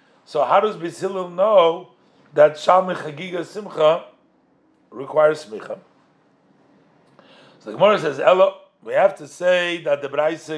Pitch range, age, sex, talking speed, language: 155-205 Hz, 50-69, male, 130 wpm, English